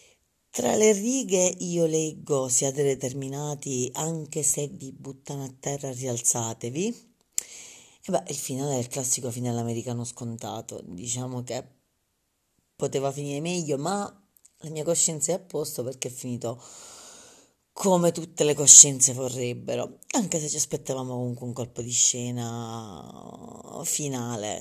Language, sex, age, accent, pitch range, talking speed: Italian, female, 30-49, native, 125-170 Hz, 130 wpm